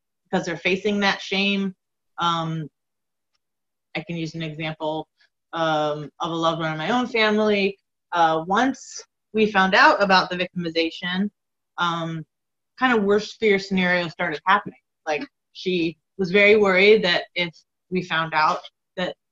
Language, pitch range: English, 160-205 Hz